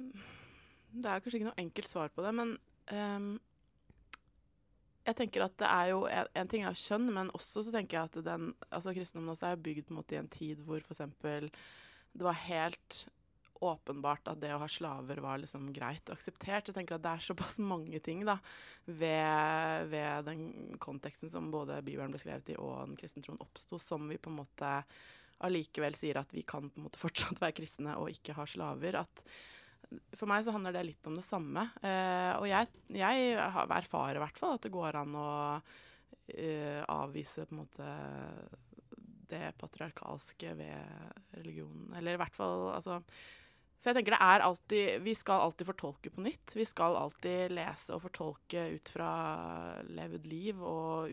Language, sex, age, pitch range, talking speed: English, female, 20-39, 150-190 Hz, 175 wpm